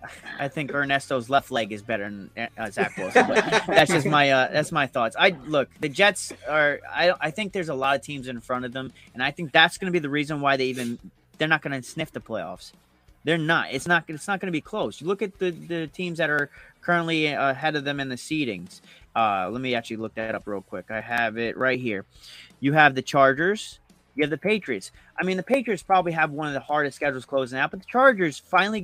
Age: 30-49